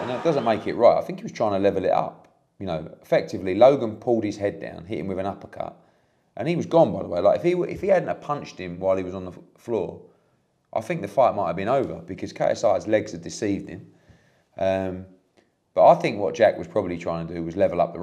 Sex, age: male, 30-49